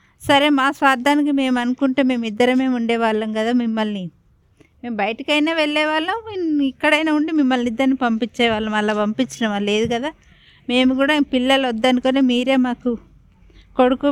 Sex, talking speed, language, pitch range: female, 120 wpm, Telugu, 215-265 Hz